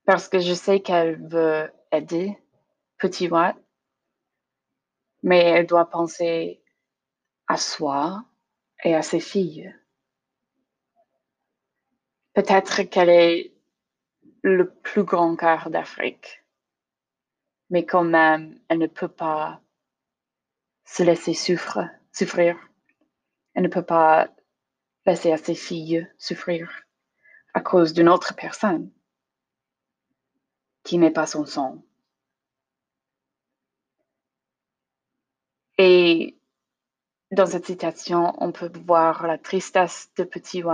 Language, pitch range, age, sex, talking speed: French, 165-185 Hz, 20-39, female, 100 wpm